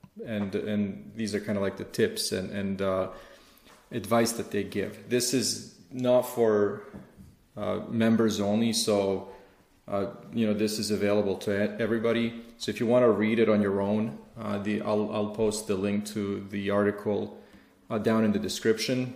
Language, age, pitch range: English, 30-49, 100-110 Hz